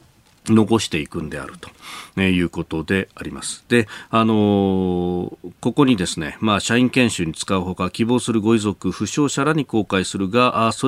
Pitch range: 95-115 Hz